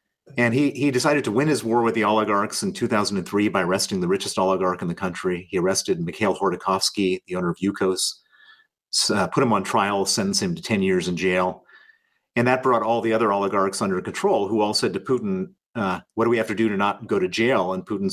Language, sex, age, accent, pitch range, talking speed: English, male, 40-59, American, 95-135 Hz, 230 wpm